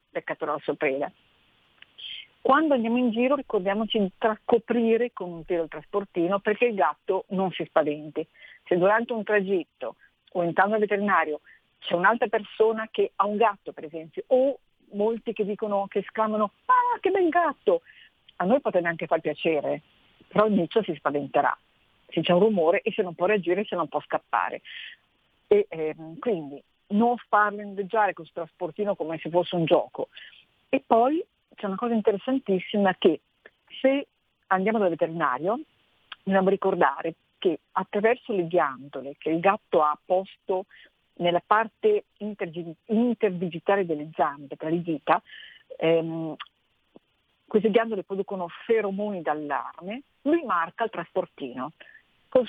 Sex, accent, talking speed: female, native, 145 wpm